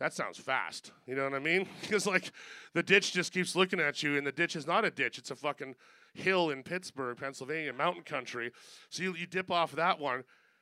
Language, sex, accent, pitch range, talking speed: English, male, American, 140-185 Hz, 225 wpm